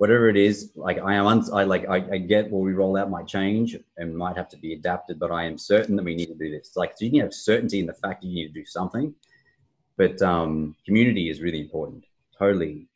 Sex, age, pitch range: male, 30-49, 80-95 Hz